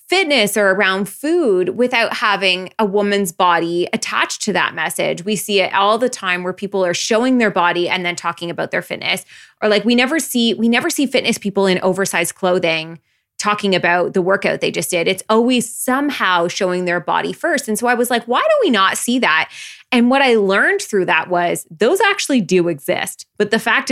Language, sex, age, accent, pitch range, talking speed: English, female, 20-39, American, 175-230 Hz, 210 wpm